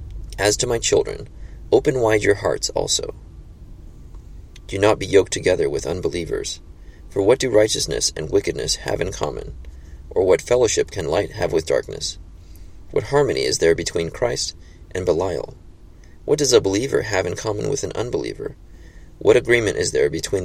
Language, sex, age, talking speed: English, male, 30-49, 165 wpm